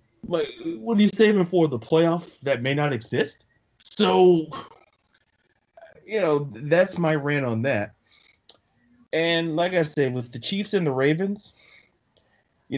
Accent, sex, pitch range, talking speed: American, male, 115-155 Hz, 145 wpm